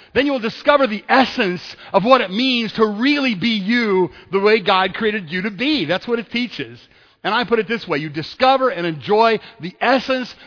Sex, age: male, 40-59